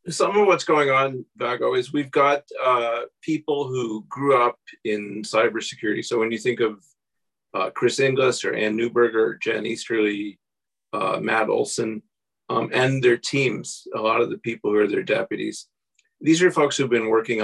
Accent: American